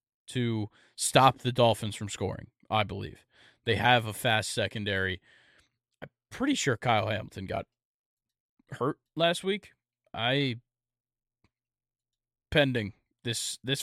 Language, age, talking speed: English, 20-39, 115 wpm